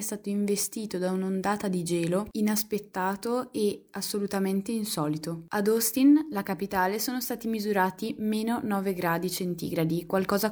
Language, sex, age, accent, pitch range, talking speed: Italian, female, 20-39, native, 185-220 Hz, 125 wpm